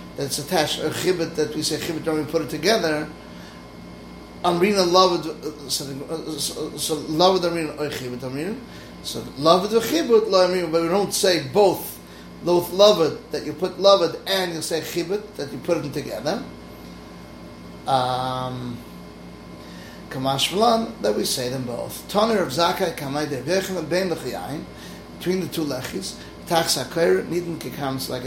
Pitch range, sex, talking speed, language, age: 125-175 Hz, male, 150 wpm, English, 30-49